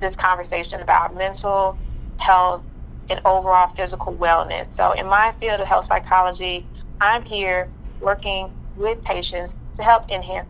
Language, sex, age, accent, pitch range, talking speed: English, female, 30-49, American, 185-230 Hz, 135 wpm